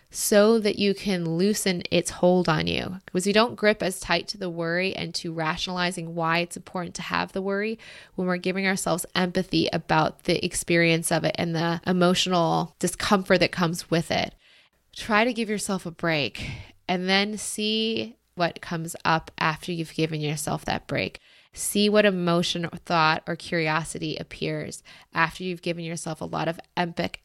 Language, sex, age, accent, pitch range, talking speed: English, female, 20-39, American, 165-195 Hz, 175 wpm